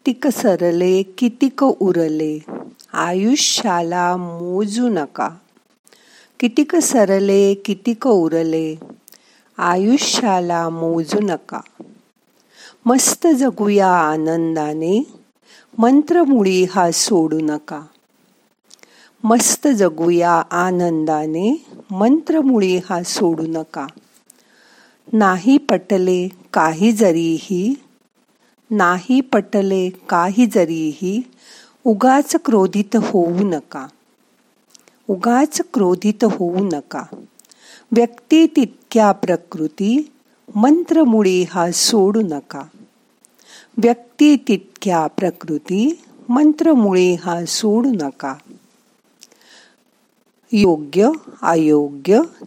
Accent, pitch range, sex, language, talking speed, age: native, 175-250 Hz, female, Marathi, 55 wpm, 50-69